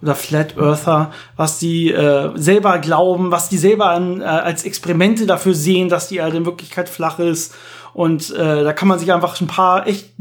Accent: German